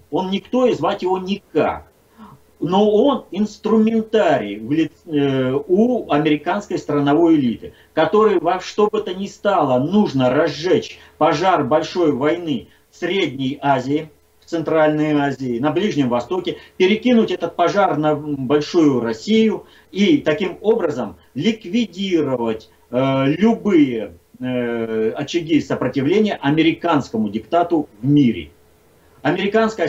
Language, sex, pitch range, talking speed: Russian, male, 130-195 Hz, 110 wpm